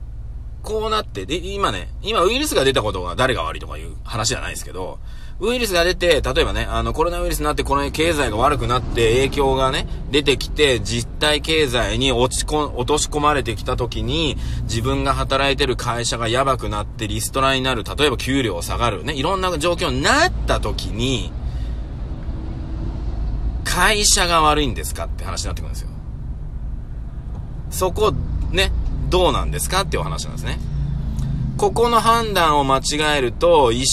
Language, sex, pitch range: Japanese, male, 100-150 Hz